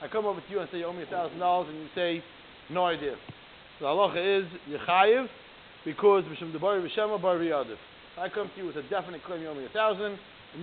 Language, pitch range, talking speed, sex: English, 165-215 Hz, 210 wpm, male